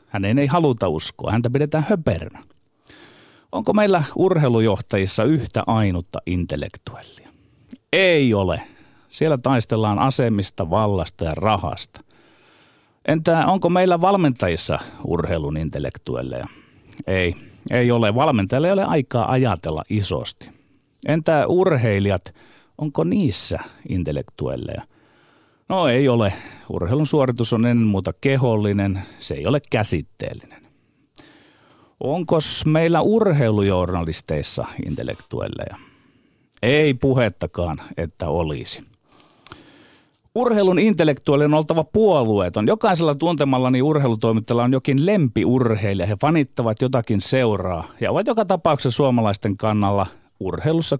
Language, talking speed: Finnish, 100 wpm